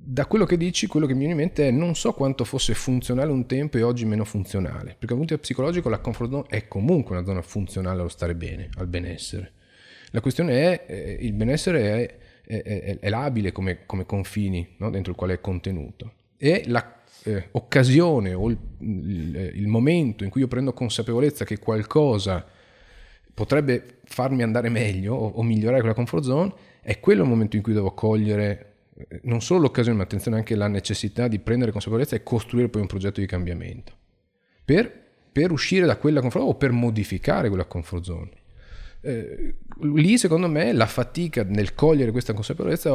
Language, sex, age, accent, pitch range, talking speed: Italian, male, 30-49, native, 100-130 Hz, 190 wpm